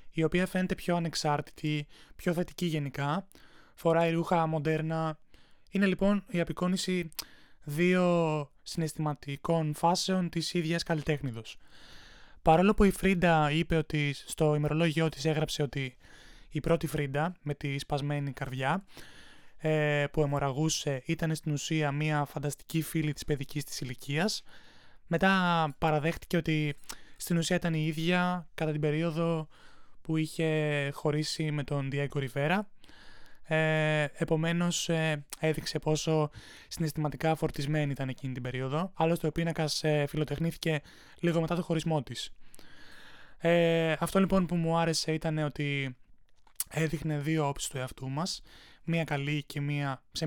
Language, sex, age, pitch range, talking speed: Greek, male, 20-39, 145-170 Hz, 125 wpm